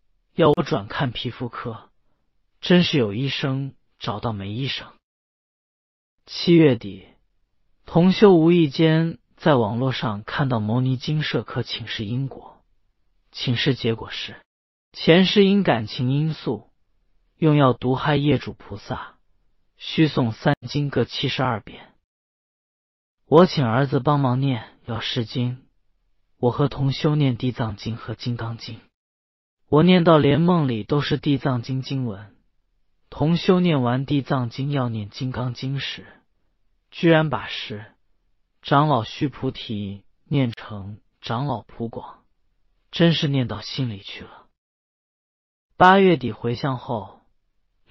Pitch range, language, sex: 110-150 Hz, Chinese, male